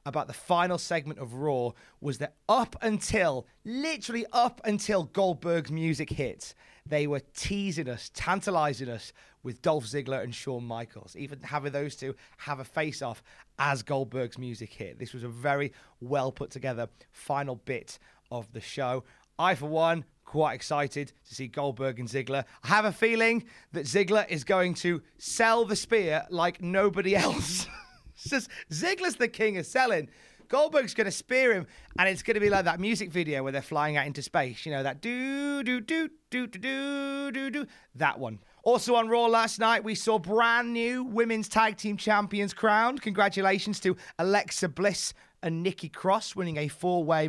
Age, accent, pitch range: 30-49, British, 140-215 Hz